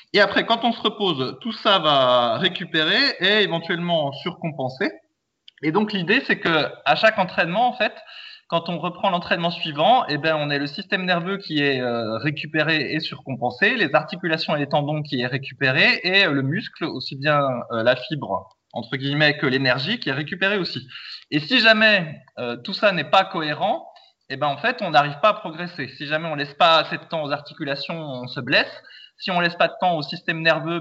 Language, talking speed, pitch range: French, 210 wpm, 140-195 Hz